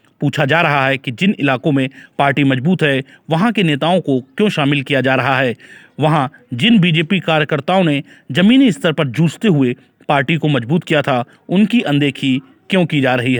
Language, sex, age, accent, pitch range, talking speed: Hindi, male, 40-59, native, 140-180 Hz, 190 wpm